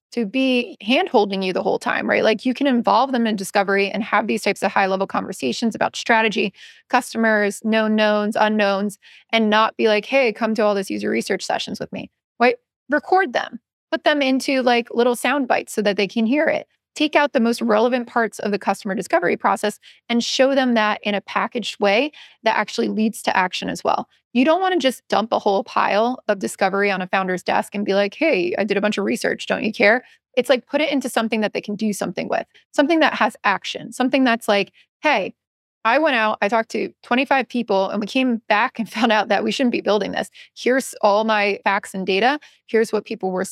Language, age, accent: English, 20-39, American